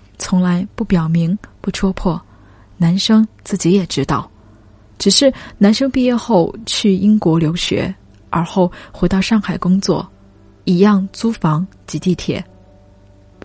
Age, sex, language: 10-29, female, Chinese